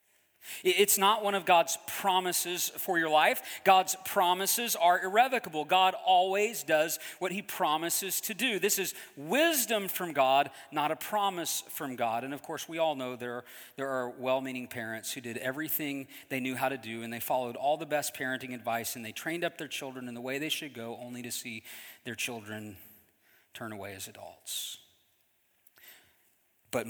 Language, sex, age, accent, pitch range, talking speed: English, male, 40-59, American, 120-170 Hz, 180 wpm